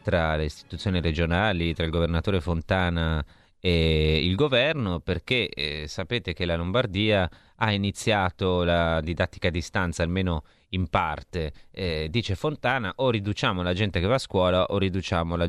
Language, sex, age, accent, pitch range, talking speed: Italian, male, 30-49, native, 80-95 Hz, 155 wpm